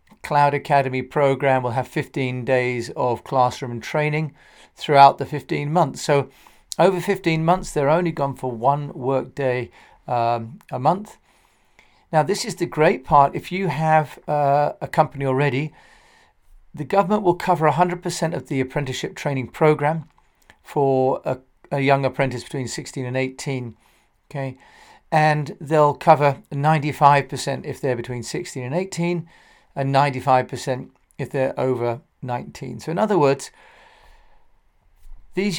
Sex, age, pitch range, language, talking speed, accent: male, 40-59, 130-160 Hz, English, 140 wpm, British